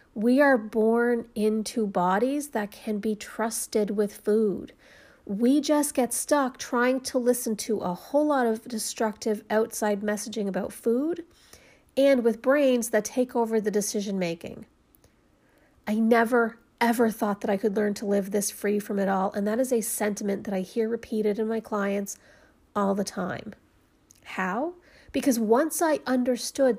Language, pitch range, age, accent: English, 210-245 Hz, 40-59, American